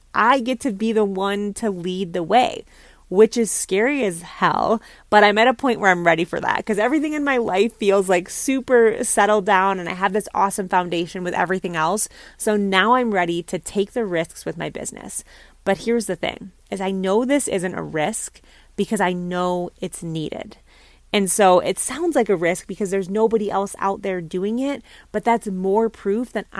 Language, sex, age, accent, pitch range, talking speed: English, female, 30-49, American, 180-220 Hz, 205 wpm